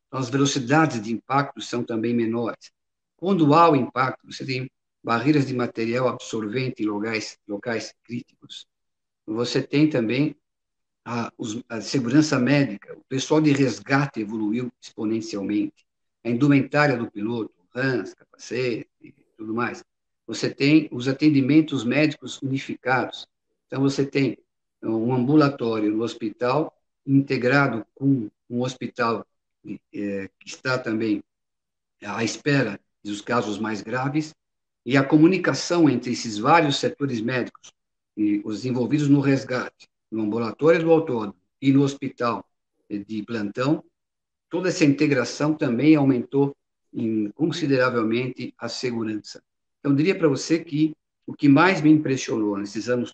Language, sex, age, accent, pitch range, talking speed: Portuguese, male, 50-69, Brazilian, 115-145 Hz, 130 wpm